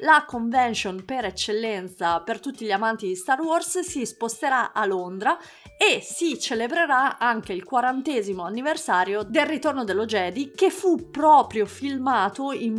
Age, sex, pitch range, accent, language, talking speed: 30-49, female, 190-255 Hz, native, Italian, 145 wpm